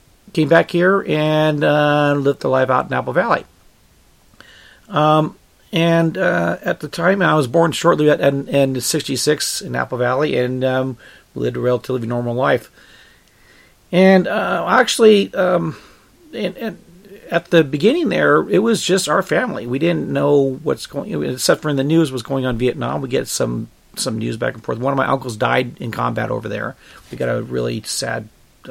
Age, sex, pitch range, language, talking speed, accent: 40-59, male, 130-165 Hz, English, 180 wpm, American